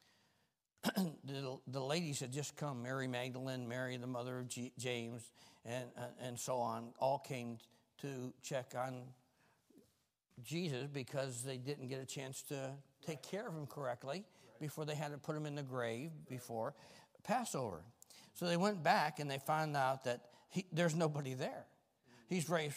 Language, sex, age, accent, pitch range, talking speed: English, male, 60-79, American, 130-185 Hz, 165 wpm